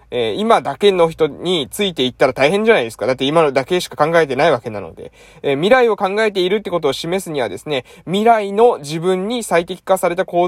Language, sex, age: Japanese, male, 20-39